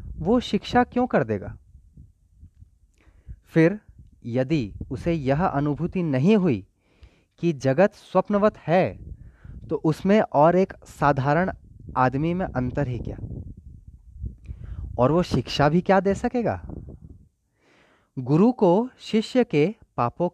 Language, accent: Hindi, native